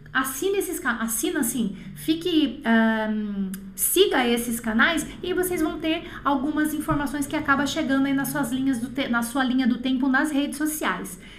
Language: French